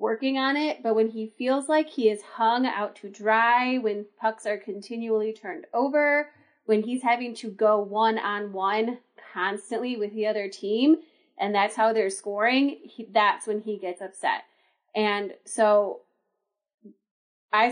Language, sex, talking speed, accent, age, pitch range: English, female, 150 wpm, American, 30-49, 210-255 Hz